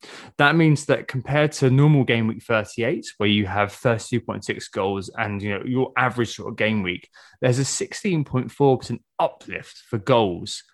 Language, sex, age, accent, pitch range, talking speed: English, male, 20-39, British, 105-135 Hz, 160 wpm